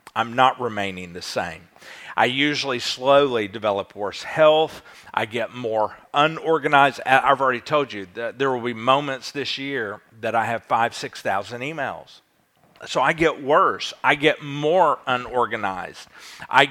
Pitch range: 115-145 Hz